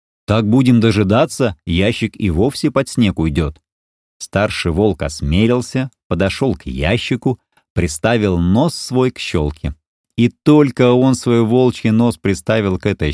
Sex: male